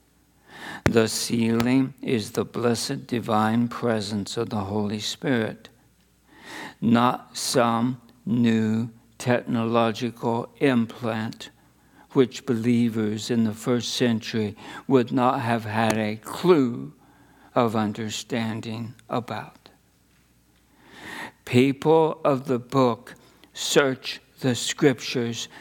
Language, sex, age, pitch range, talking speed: English, male, 60-79, 110-130 Hz, 90 wpm